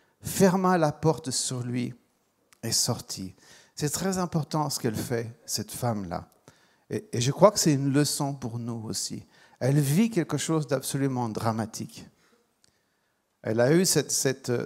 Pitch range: 135-170 Hz